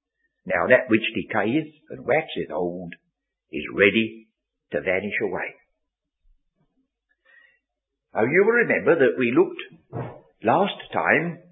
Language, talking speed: English, 110 wpm